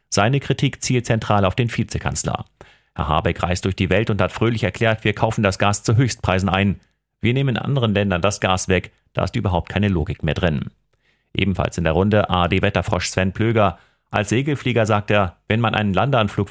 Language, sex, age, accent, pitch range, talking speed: German, male, 40-59, German, 95-115 Hz, 195 wpm